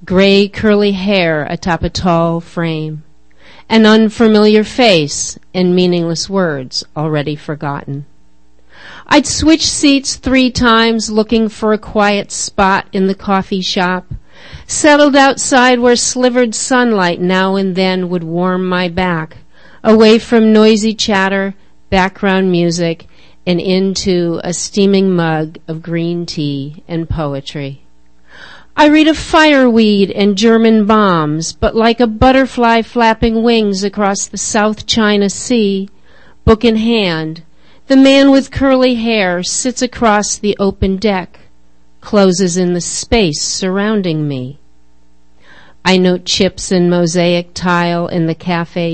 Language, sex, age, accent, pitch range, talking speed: English, female, 50-69, American, 170-220 Hz, 125 wpm